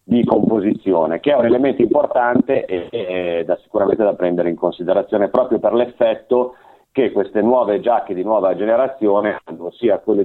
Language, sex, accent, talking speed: Italian, male, native, 170 wpm